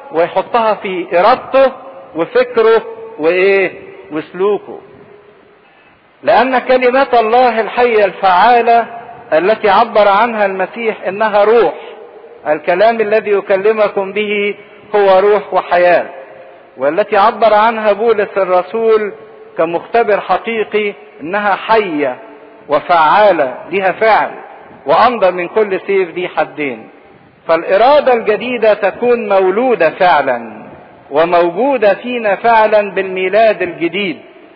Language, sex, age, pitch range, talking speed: English, male, 50-69, 180-230 Hz, 90 wpm